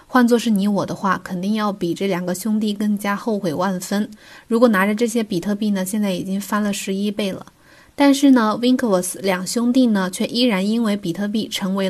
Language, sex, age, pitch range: Chinese, female, 20-39, 190-240 Hz